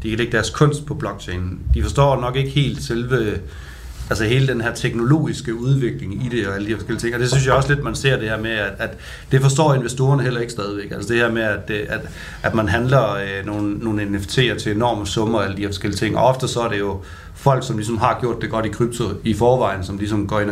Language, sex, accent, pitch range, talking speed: Danish, male, native, 105-135 Hz, 255 wpm